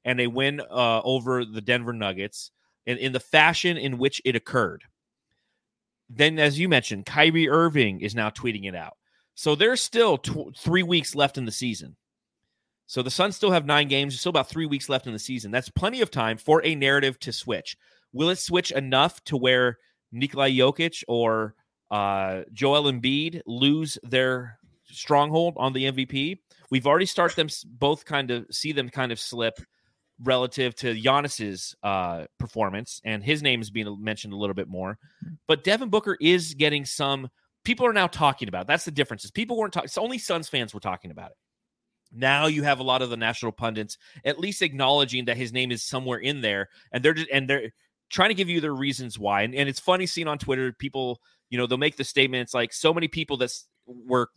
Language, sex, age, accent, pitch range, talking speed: English, male, 30-49, American, 120-150 Hz, 205 wpm